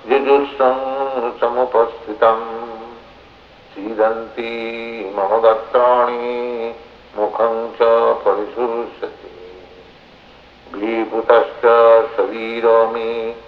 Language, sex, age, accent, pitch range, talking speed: Czech, male, 60-79, Indian, 110-120 Hz, 50 wpm